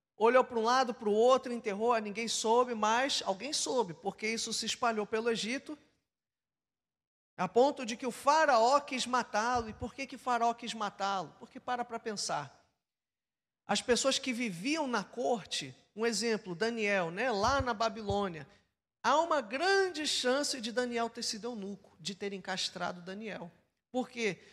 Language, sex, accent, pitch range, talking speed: Portuguese, male, Brazilian, 225-285 Hz, 160 wpm